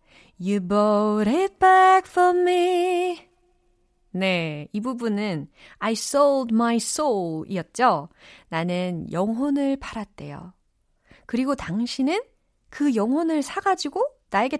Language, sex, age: Korean, female, 30-49